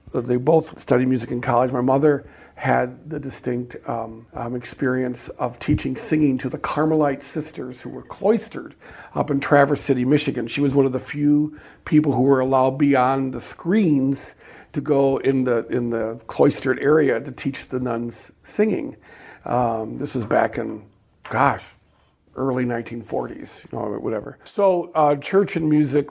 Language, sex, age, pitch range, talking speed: English, male, 50-69, 120-140 Hz, 165 wpm